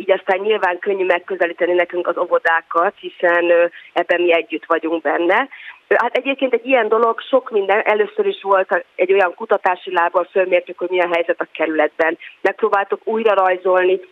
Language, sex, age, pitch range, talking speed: Hungarian, female, 30-49, 170-205 Hz, 155 wpm